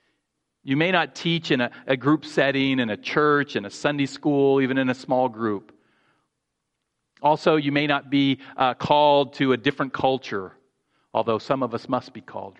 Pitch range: 115-145 Hz